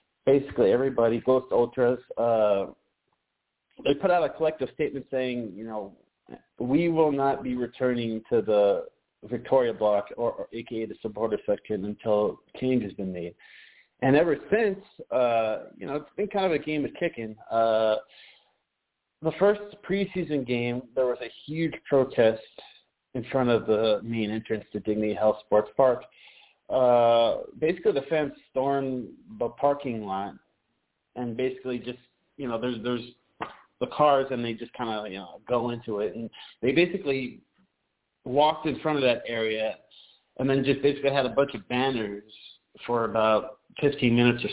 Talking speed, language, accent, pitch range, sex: 160 wpm, English, American, 115-145 Hz, male